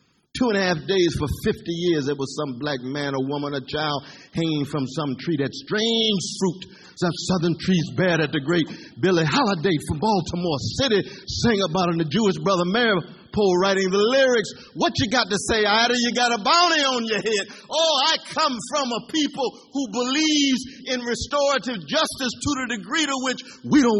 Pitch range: 180-255 Hz